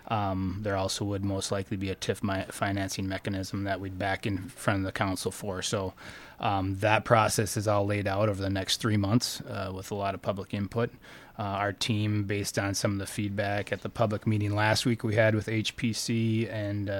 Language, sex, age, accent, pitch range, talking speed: English, male, 20-39, American, 100-110 Hz, 215 wpm